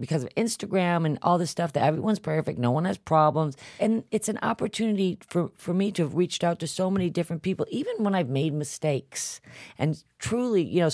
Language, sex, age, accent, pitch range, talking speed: English, female, 40-59, American, 150-190 Hz, 215 wpm